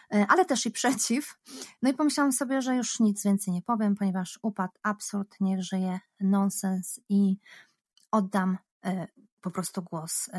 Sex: female